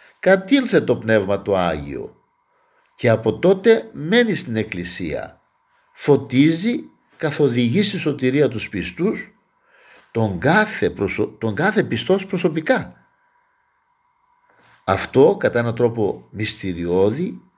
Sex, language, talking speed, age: male, Greek, 100 wpm, 60-79